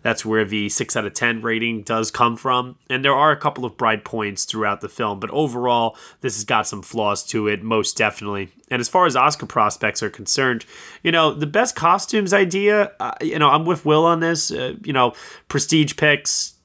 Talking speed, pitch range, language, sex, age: 215 wpm, 110-145 Hz, English, male, 20-39